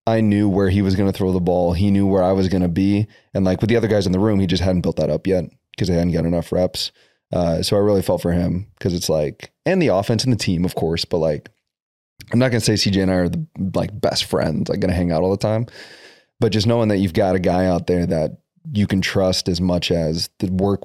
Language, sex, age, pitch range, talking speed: English, male, 20-39, 90-100 Hz, 285 wpm